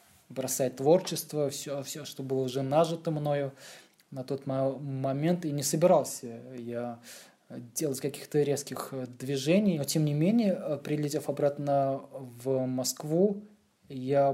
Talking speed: 115 wpm